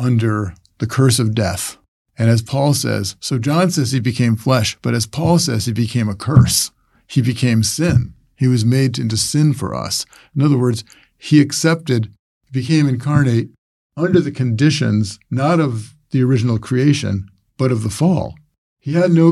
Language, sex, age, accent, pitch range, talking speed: English, male, 50-69, American, 110-145 Hz, 170 wpm